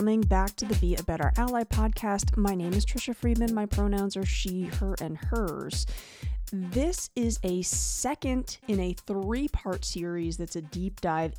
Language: English